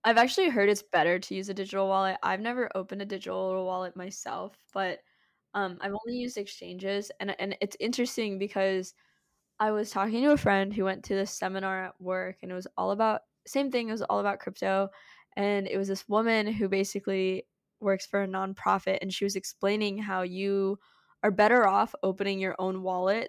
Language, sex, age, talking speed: English, female, 10-29, 200 wpm